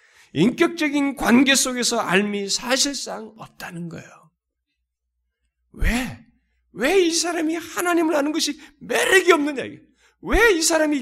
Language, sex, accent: Korean, male, native